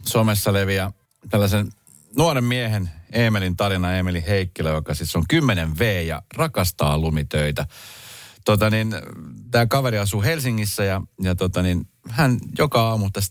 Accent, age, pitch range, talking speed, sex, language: native, 30-49, 85-120 Hz, 140 wpm, male, Finnish